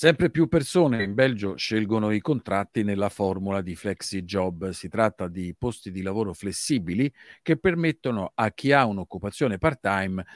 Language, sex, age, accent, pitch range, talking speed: Italian, male, 50-69, native, 95-130 Hz, 155 wpm